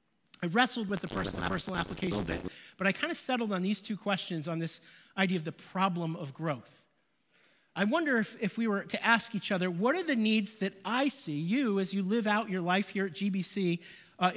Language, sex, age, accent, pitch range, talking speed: English, male, 40-59, American, 185-230 Hz, 215 wpm